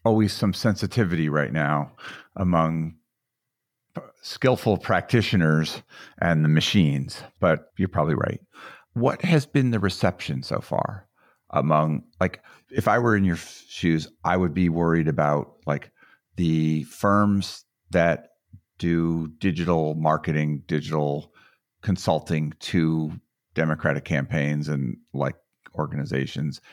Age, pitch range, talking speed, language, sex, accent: 50-69, 75-95 Hz, 110 wpm, English, male, American